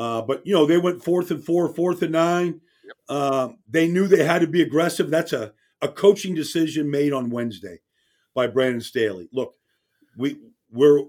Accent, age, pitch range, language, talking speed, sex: American, 50-69, 130-160 Hz, English, 185 wpm, male